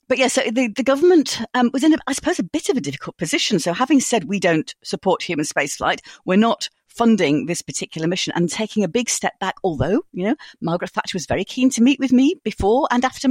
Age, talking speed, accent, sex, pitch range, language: 40-59, 230 wpm, British, female, 180-255 Hz, English